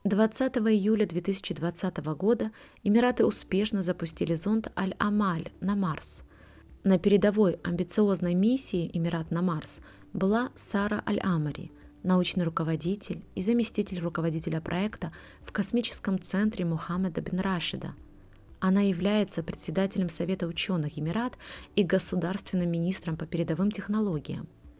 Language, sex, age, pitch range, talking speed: Russian, female, 20-39, 165-200 Hz, 110 wpm